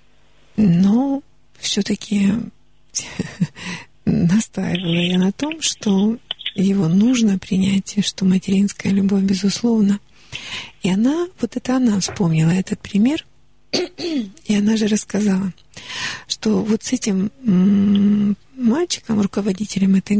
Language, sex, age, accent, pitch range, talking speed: Russian, female, 50-69, native, 195-235 Hz, 100 wpm